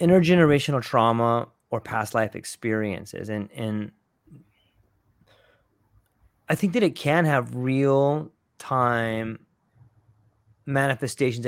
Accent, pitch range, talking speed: American, 120-155 Hz, 90 wpm